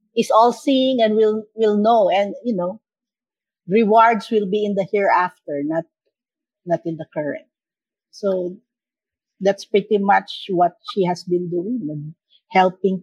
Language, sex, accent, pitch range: English, female, Filipino, 190-240 Hz